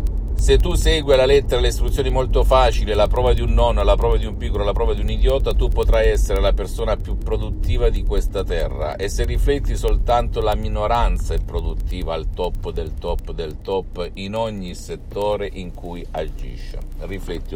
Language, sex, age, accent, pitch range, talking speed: Italian, male, 50-69, native, 85-105 Hz, 190 wpm